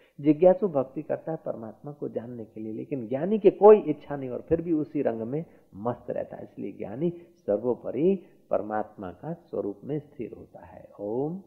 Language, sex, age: Hindi, male, 50-69